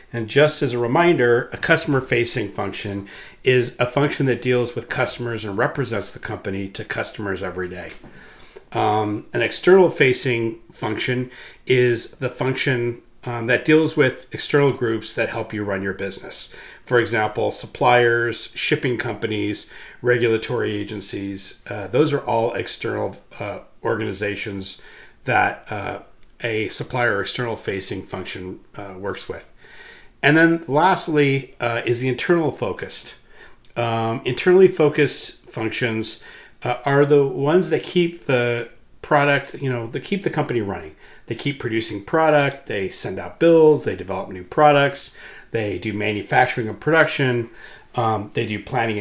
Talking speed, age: 140 wpm, 40-59